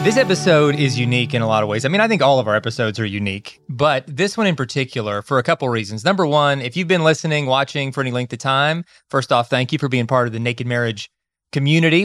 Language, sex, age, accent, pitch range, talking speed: English, male, 30-49, American, 125-155 Hz, 265 wpm